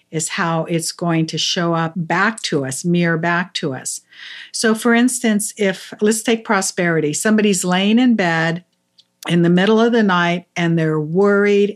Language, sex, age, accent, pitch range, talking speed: English, female, 50-69, American, 170-215 Hz, 175 wpm